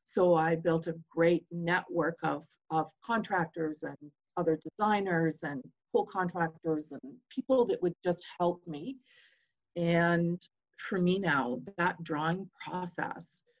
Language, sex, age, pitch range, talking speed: English, female, 40-59, 165-190 Hz, 130 wpm